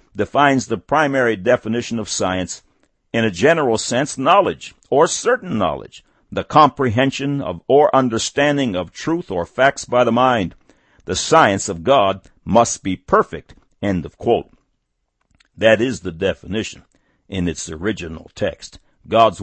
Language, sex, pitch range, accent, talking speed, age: English, male, 85-125 Hz, American, 140 wpm, 60-79